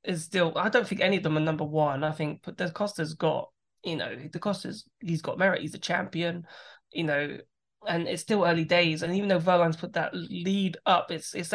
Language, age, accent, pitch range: English, 20-39, British, 155-180 Hz